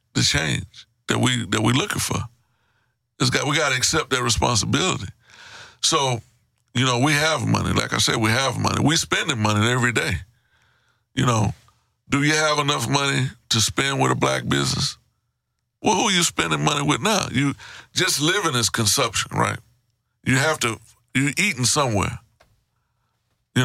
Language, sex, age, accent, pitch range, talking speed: English, male, 60-79, American, 115-130 Hz, 165 wpm